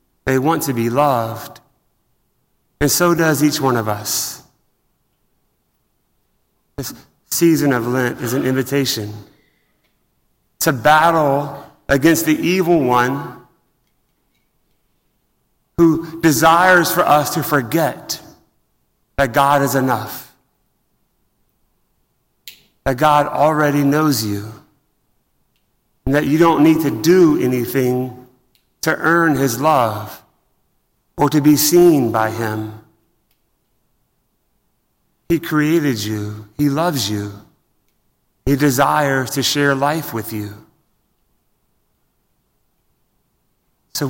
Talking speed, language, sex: 100 wpm, English, male